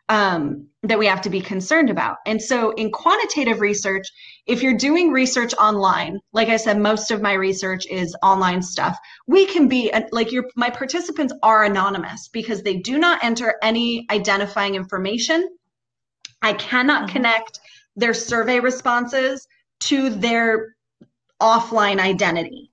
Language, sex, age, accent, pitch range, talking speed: English, female, 30-49, American, 200-255 Hz, 145 wpm